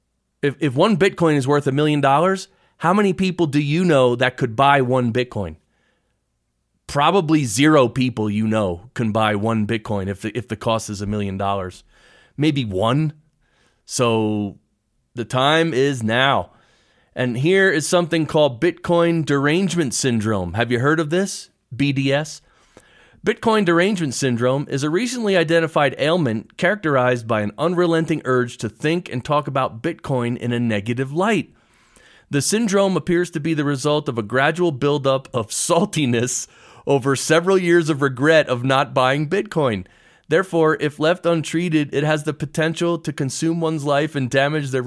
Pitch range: 120-165 Hz